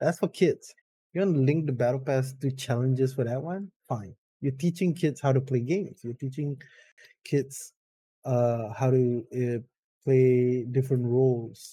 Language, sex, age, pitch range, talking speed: English, male, 20-39, 125-150 Hz, 170 wpm